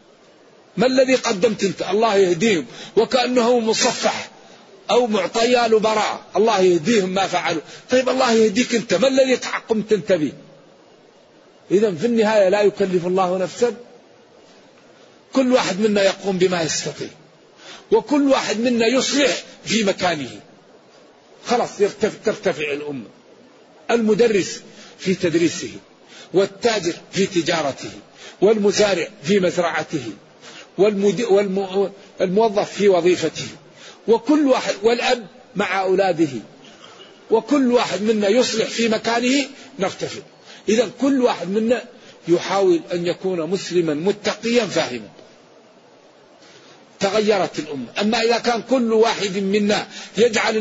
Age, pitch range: 50-69, 180-230 Hz